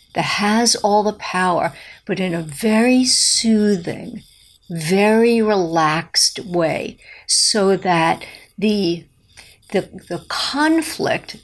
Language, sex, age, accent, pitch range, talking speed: English, female, 60-79, American, 175-230 Hz, 95 wpm